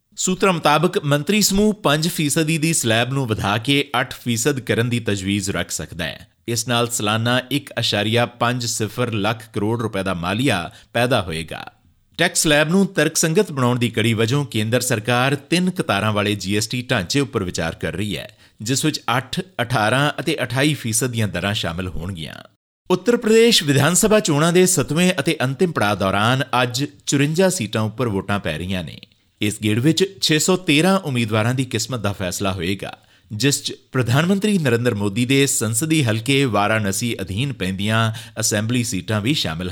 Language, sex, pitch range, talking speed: Punjabi, male, 105-150 Hz, 145 wpm